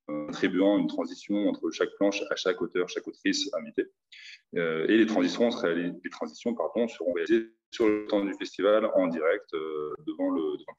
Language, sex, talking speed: French, male, 185 wpm